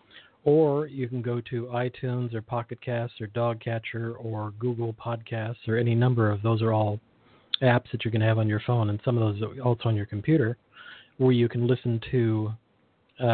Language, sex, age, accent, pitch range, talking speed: English, male, 40-59, American, 110-130 Hz, 205 wpm